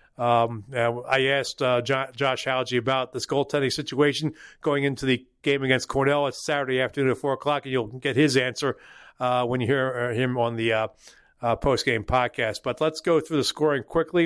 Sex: male